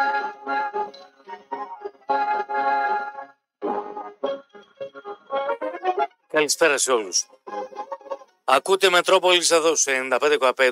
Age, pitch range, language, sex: 40-59, 145-200 Hz, Greek, male